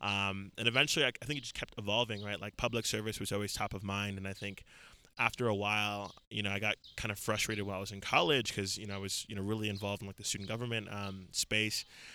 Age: 20-39